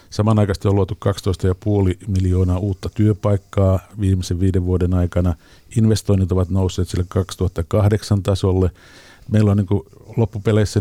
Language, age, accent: Finnish, 50-69, native